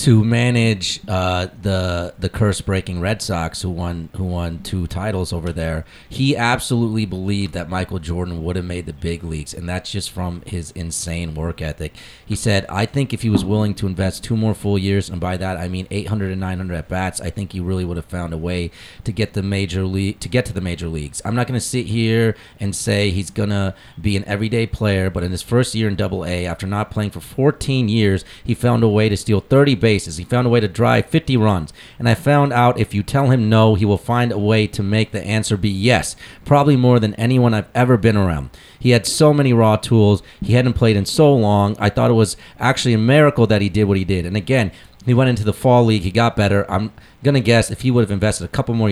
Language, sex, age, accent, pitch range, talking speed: English, male, 30-49, American, 95-115 Hz, 245 wpm